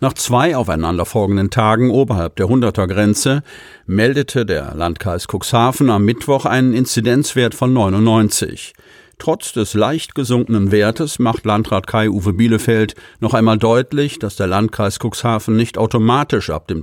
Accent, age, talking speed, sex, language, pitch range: German, 50-69, 130 wpm, male, German, 100-125 Hz